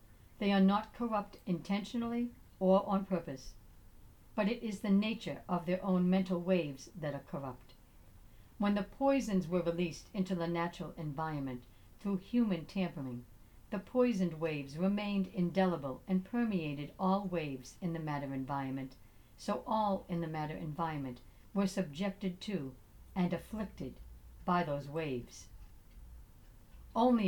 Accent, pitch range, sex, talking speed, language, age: American, 135-195 Hz, female, 135 wpm, English, 60-79